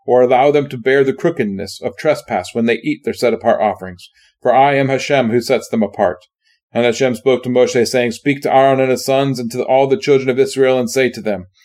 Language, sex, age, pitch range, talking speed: English, male, 30-49, 125-145 Hz, 235 wpm